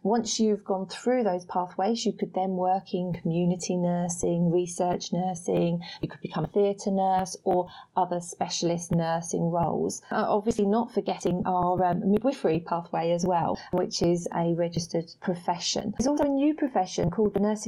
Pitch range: 175-210 Hz